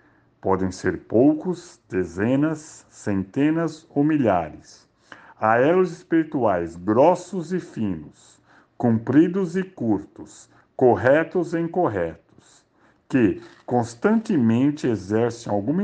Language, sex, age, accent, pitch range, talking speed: Portuguese, male, 60-79, Brazilian, 100-160 Hz, 85 wpm